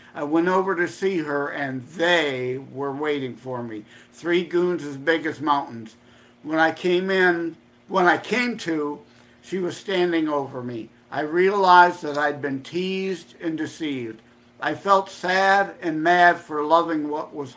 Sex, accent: male, American